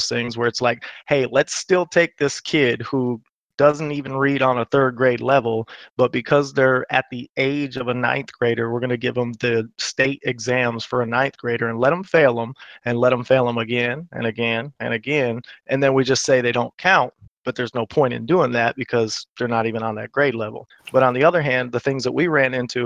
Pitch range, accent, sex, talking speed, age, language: 120-135 Hz, American, male, 235 wpm, 30-49, English